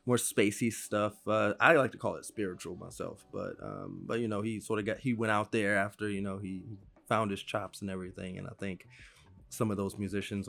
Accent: American